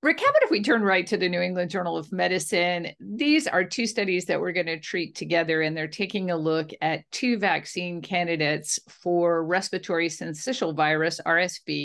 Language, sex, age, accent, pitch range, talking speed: English, female, 50-69, American, 165-205 Hz, 190 wpm